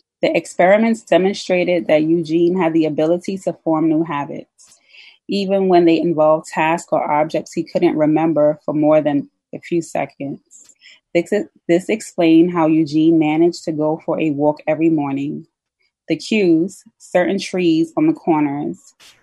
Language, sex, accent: English, female, American